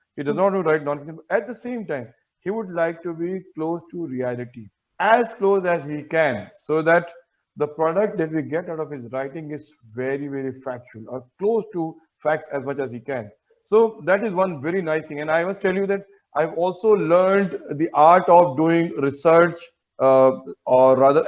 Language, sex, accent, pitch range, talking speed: English, male, Indian, 145-175 Hz, 205 wpm